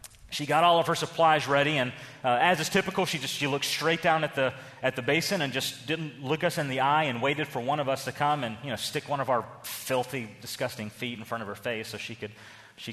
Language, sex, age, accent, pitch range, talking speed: English, male, 30-49, American, 120-160 Hz, 270 wpm